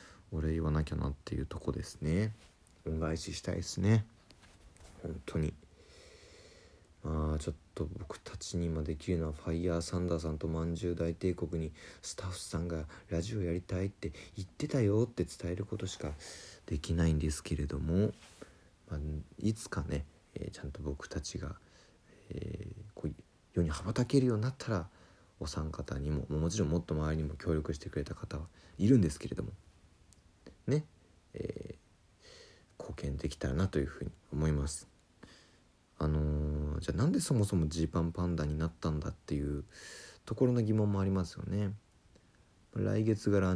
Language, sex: Japanese, male